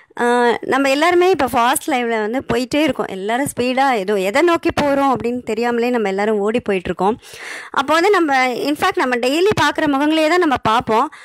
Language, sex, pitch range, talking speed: Tamil, male, 225-345 Hz, 165 wpm